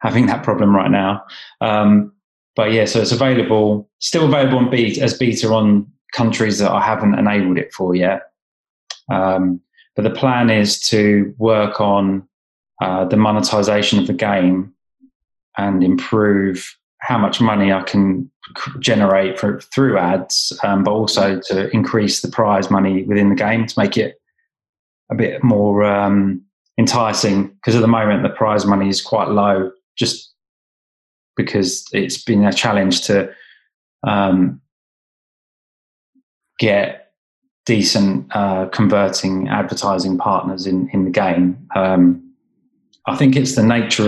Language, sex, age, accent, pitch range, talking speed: Dutch, male, 20-39, British, 95-115 Hz, 140 wpm